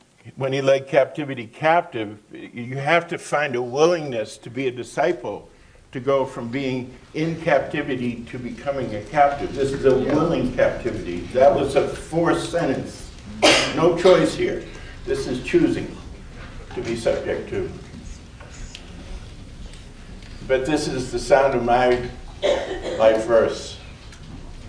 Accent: American